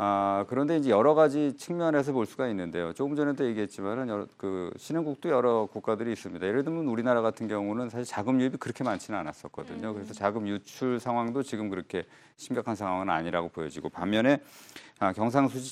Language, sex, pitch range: Korean, male, 90-120 Hz